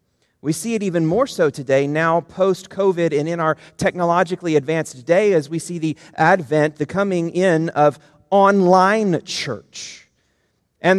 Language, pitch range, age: English, 155-200 Hz, 30-49